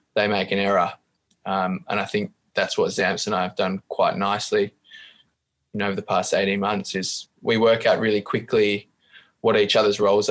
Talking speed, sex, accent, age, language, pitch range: 200 wpm, male, Australian, 20-39, English, 100-115 Hz